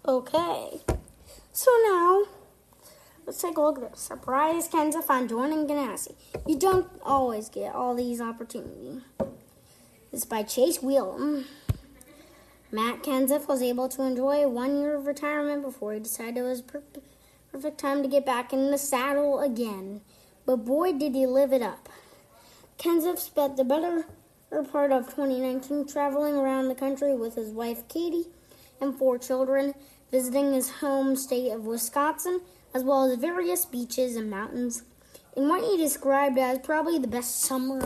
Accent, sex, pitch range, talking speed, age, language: American, female, 255-300 Hz, 155 wpm, 10-29, English